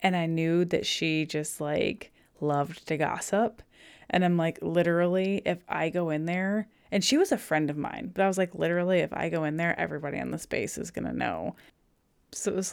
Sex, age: female, 20-39